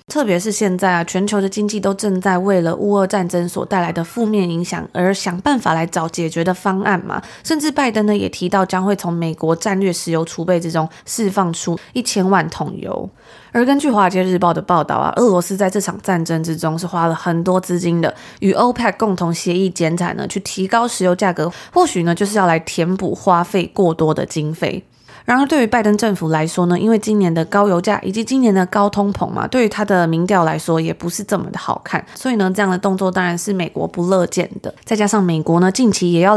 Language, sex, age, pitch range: Chinese, female, 20-39, 170-205 Hz